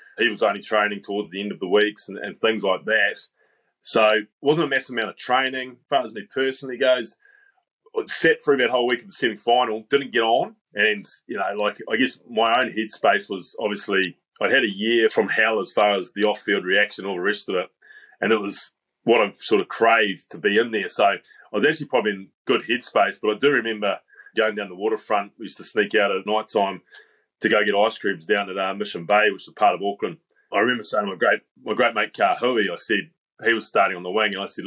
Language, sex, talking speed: English, male, 245 wpm